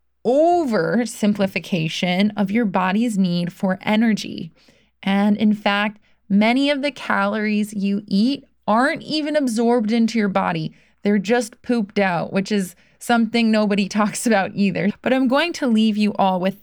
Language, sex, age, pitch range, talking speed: English, female, 20-39, 190-235 Hz, 150 wpm